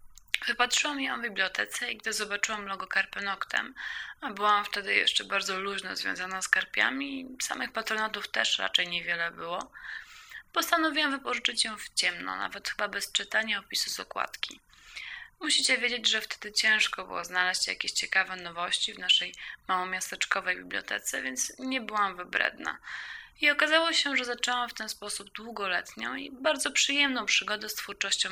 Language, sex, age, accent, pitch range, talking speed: Polish, female, 20-39, native, 200-265 Hz, 145 wpm